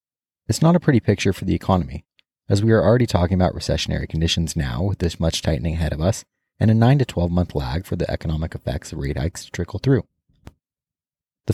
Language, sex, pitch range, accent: English, male, 85-115 Hz, American